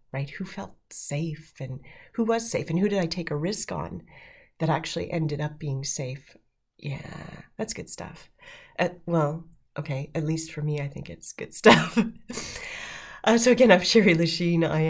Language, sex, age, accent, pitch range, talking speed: English, female, 30-49, American, 155-195 Hz, 180 wpm